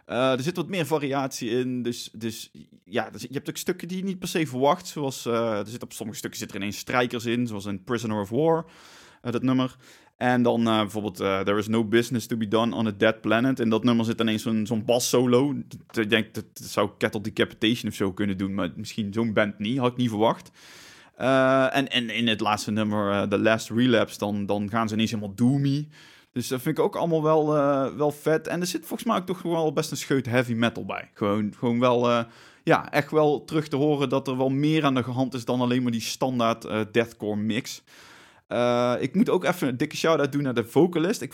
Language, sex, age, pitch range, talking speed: Dutch, male, 20-39, 110-140 Hz, 240 wpm